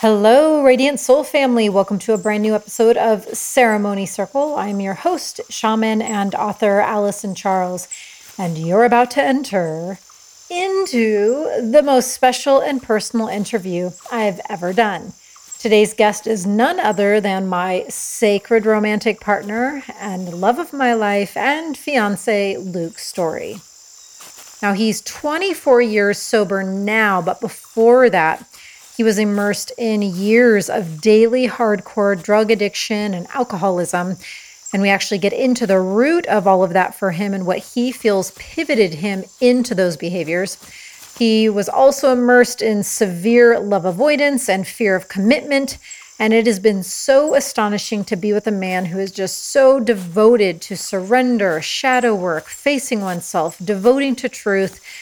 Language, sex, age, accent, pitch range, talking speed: English, female, 30-49, American, 195-245 Hz, 145 wpm